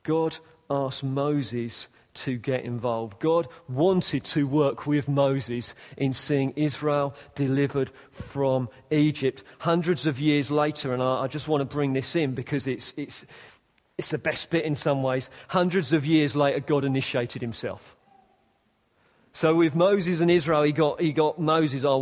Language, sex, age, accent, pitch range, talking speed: English, male, 40-59, British, 130-160 Hz, 160 wpm